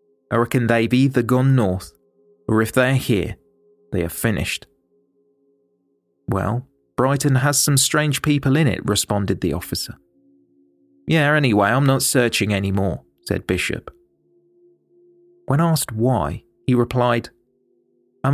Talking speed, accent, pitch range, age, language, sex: 125 wpm, British, 115-145 Hz, 30-49, English, male